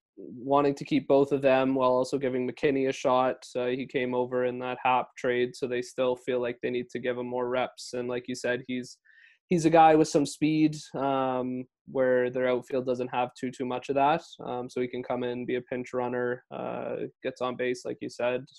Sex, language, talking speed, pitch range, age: male, English, 230 wpm, 125-140 Hz, 20-39